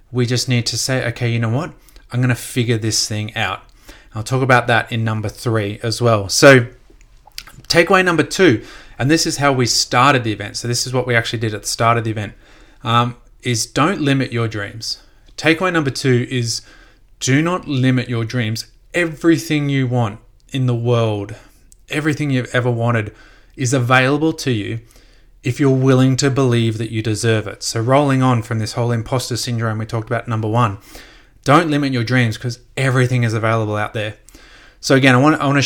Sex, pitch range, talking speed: male, 110-130 Hz, 200 wpm